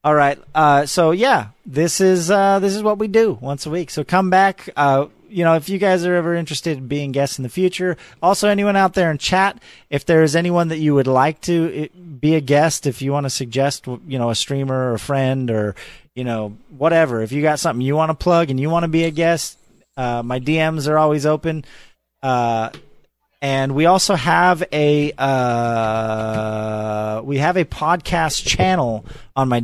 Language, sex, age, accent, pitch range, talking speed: English, male, 30-49, American, 125-170 Hz, 205 wpm